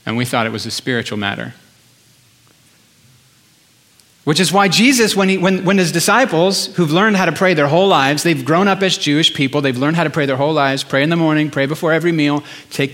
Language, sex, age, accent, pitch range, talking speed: English, male, 40-59, American, 125-165 Hz, 225 wpm